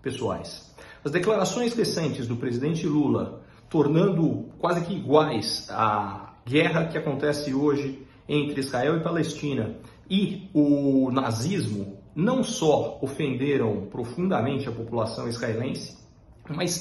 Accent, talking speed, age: Brazilian, 110 wpm, 40-59